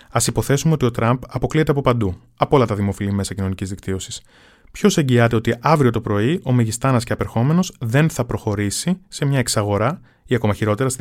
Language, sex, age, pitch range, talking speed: Greek, male, 20-39, 105-120 Hz, 190 wpm